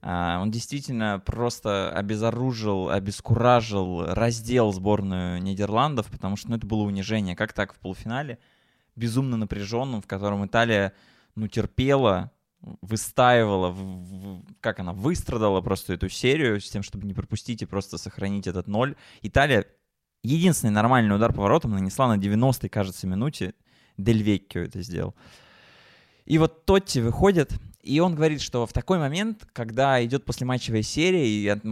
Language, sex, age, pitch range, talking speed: Russian, male, 20-39, 100-125 Hz, 135 wpm